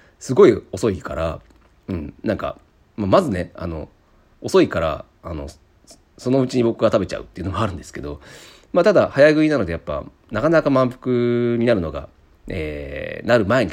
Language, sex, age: Japanese, male, 40-59